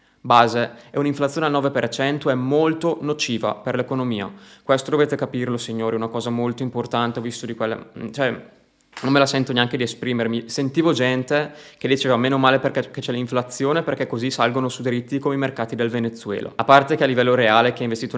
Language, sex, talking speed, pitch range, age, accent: Italian, male, 195 wpm, 115-130 Hz, 20-39, native